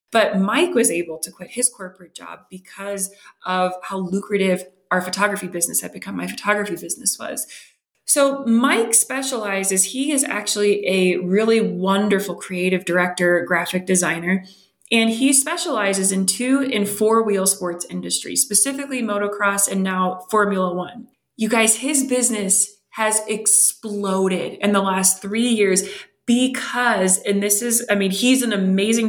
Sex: female